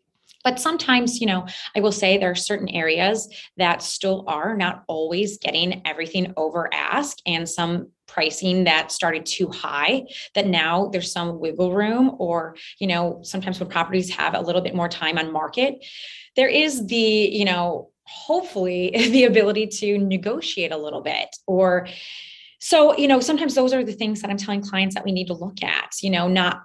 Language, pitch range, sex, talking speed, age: English, 175-220 Hz, female, 185 wpm, 20-39